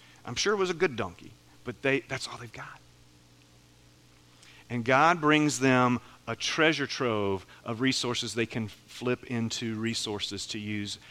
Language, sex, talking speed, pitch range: English, male, 155 wpm, 90-140 Hz